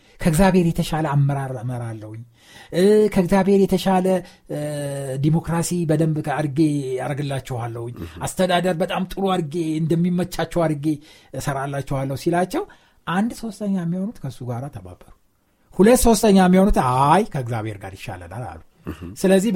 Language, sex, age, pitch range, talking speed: Amharic, male, 60-79, 135-190 Hz, 100 wpm